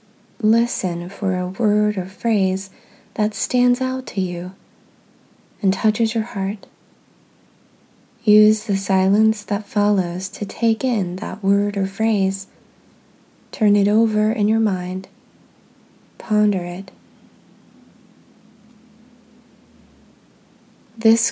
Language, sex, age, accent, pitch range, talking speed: English, female, 20-39, American, 195-235 Hz, 100 wpm